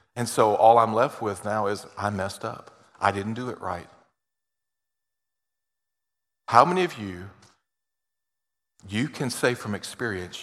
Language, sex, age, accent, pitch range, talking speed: English, male, 40-59, American, 100-130 Hz, 145 wpm